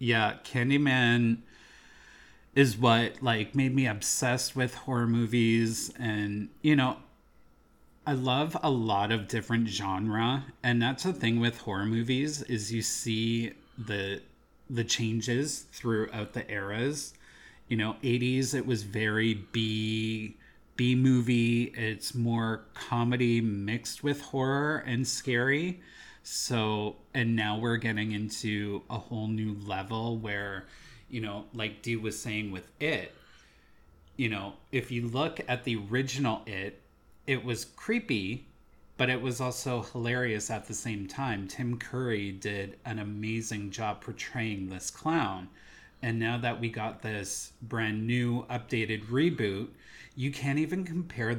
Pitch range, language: 105-125 Hz, English